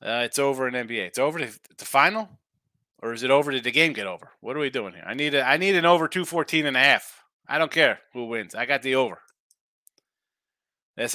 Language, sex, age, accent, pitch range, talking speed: English, male, 30-49, American, 110-150 Hz, 230 wpm